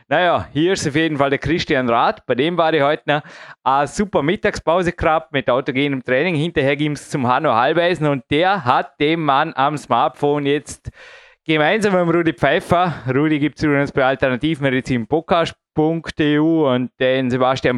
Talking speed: 170 wpm